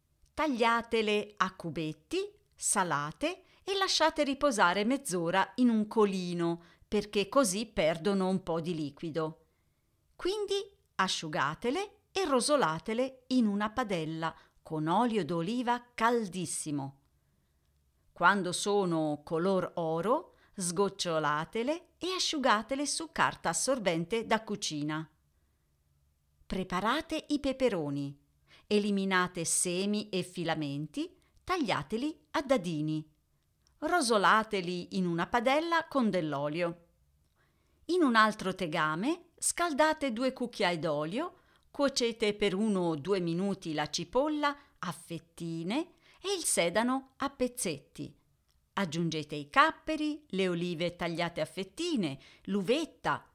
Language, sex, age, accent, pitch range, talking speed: Italian, female, 40-59, native, 165-265 Hz, 100 wpm